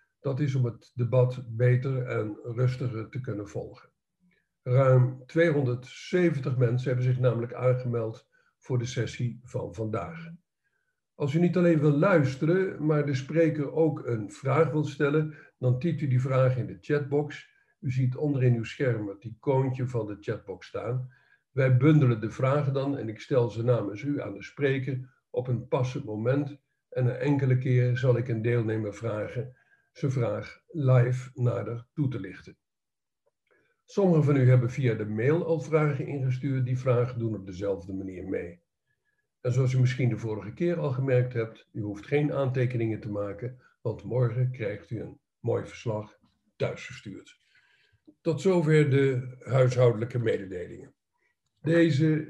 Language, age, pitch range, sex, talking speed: Dutch, 50-69, 120-150 Hz, male, 160 wpm